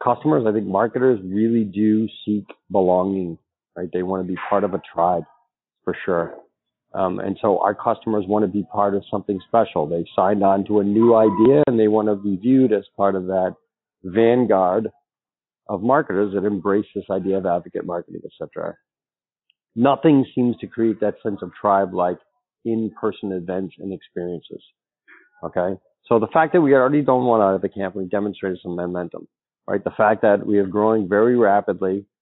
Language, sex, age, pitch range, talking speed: English, male, 40-59, 95-110 Hz, 180 wpm